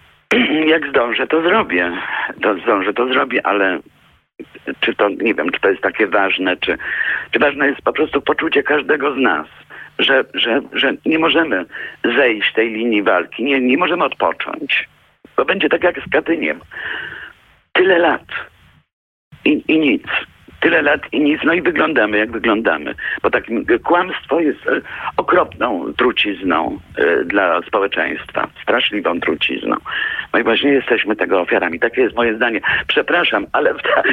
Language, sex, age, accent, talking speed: Polish, male, 50-69, native, 155 wpm